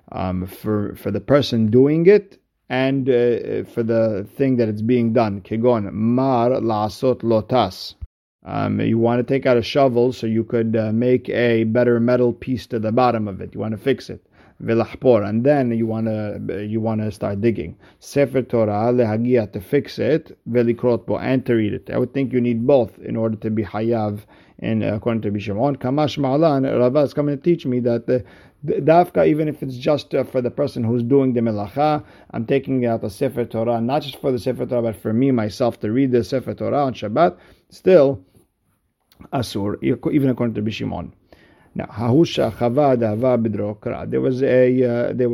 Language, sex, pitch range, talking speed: English, male, 110-130 Hz, 175 wpm